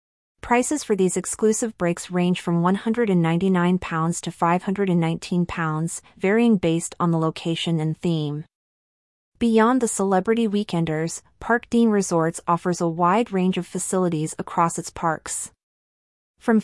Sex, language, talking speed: female, English, 125 wpm